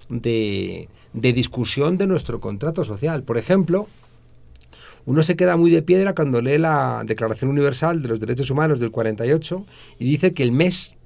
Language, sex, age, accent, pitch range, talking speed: Spanish, male, 50-69, Spanish, 115-160 Hz, 170 wpm